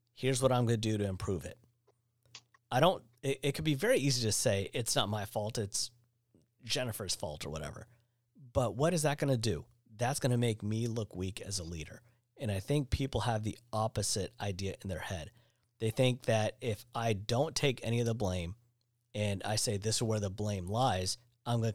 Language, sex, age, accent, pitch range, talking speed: English, male, 40-59, American, 105-125 Hz, 215 wpm